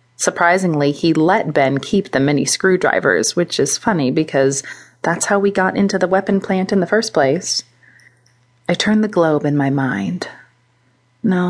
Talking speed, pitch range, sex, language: 160 wpm, 130-180 Hz, female, English